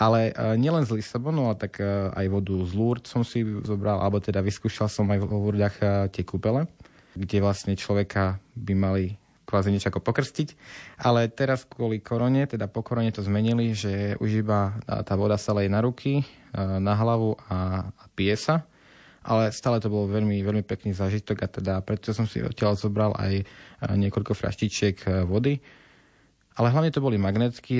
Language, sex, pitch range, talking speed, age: Slovak, male, 95-110 Hz, 165 wpm, 20-39